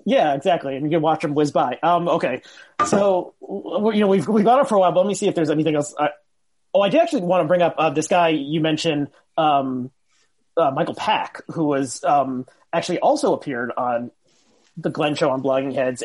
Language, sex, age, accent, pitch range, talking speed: English, male, 30-49, American, 145-175 Hz, 225 wpm